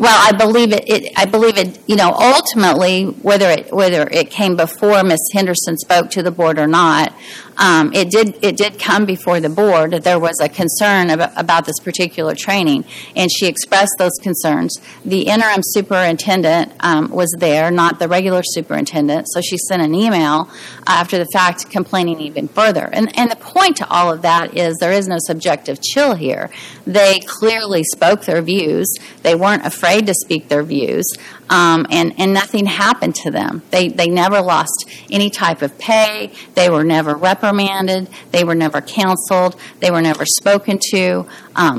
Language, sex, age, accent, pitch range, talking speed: English, female, 40-59, American, 170-205 Hz, 180 wpm